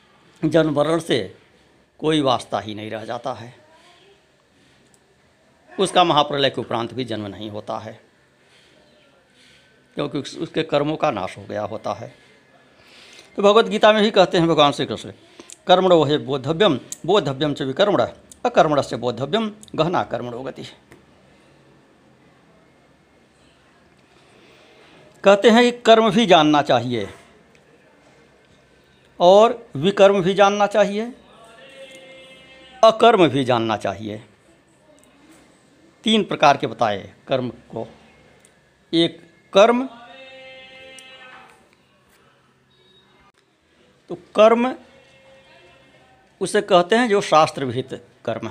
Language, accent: Hindi, native